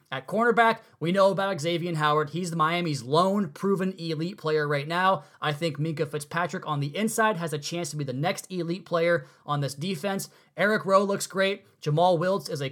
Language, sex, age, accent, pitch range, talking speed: English, male, 20-39, American, 155-195 Hz, 205 wpm